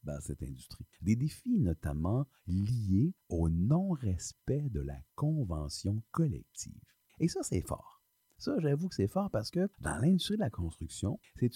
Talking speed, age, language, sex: 155 wpm, 50-69, French, male